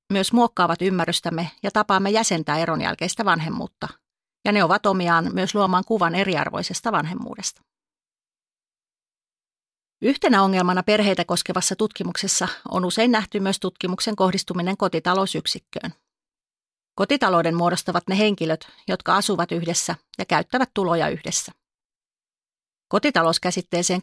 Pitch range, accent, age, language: 170-210 Hz, native, 30-49, Finnish